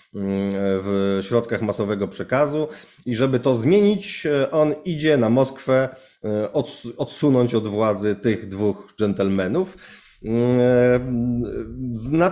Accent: native